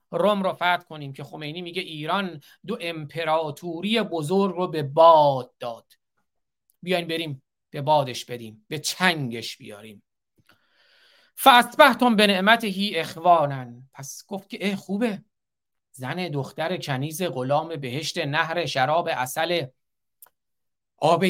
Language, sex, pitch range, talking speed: Persian, male, 140-200 Hz, 115 wpm